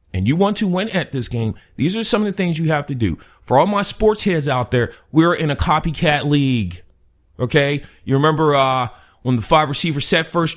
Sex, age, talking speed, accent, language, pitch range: male, 30-49, 225 wpm, American, English, 110-165 Hz